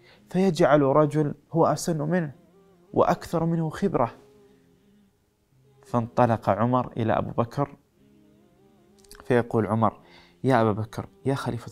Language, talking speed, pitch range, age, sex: Arabic, 100 wpm, 120-170 Hz, 20-39, male